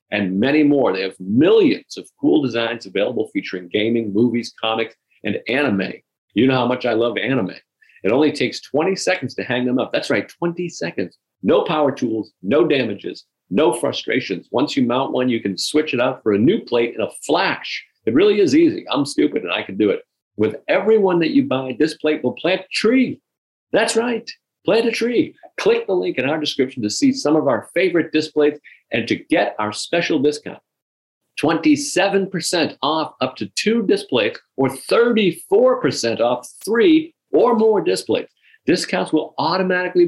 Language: English